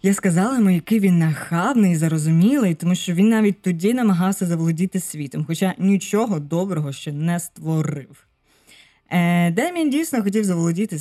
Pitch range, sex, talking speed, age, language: 155-200 Hz, female, 135 wpm, 20-39, Ukrainian